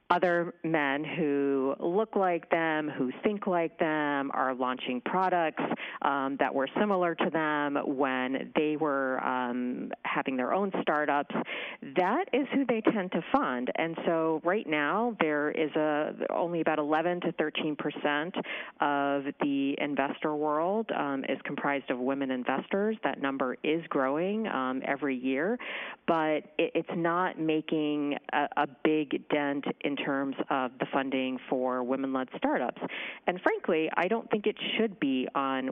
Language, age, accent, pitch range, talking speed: English, 40-59, American, 135-170 Hz, 150 wpm